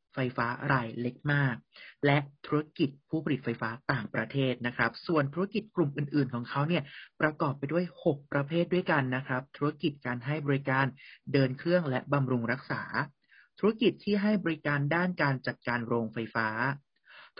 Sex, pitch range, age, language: male, 125-165 Hz, 30-49, Thai